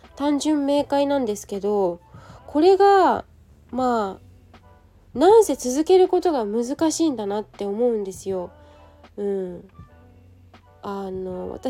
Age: 20-39